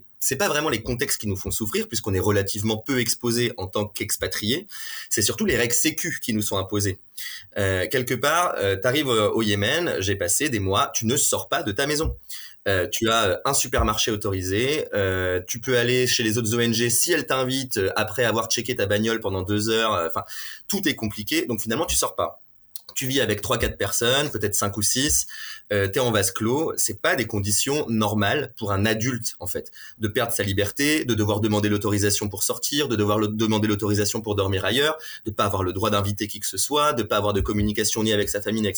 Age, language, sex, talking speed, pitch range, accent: 20-39, French, male, 220 wpm, 100-125 Hz, French